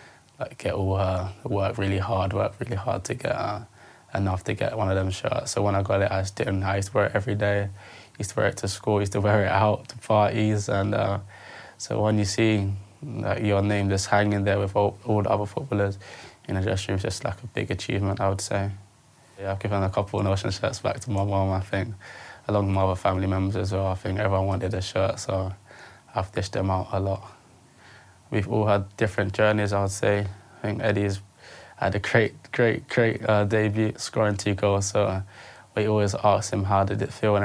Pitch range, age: 95-105 Hz, 20-39